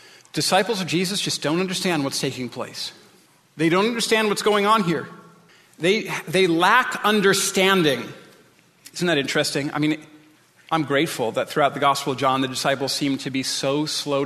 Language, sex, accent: English, male, American